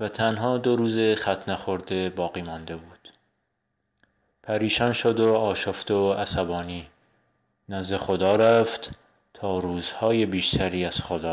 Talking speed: 120 wpm